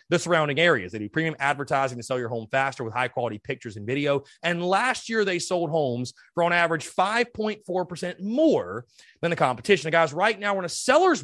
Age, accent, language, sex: 30-49, American, English, male